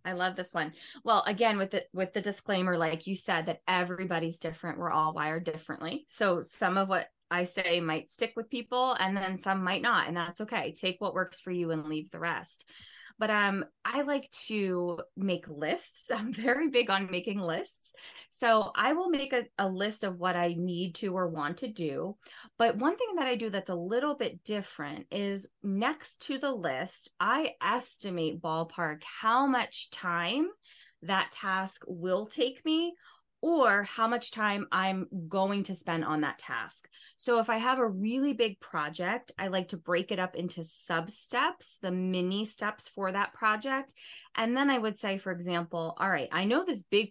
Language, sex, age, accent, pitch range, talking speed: English, female, 20-39, American, 175-230 Hz, 190 wpm